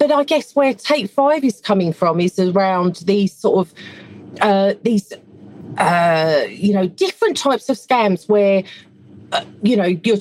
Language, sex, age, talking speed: English, female, 40-59, 165 wpm